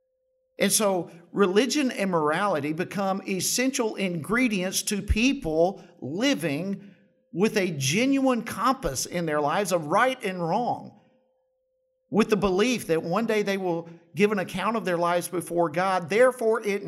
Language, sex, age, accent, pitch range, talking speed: English, male, 50-69, American, 160-220 Hz, 140 wpm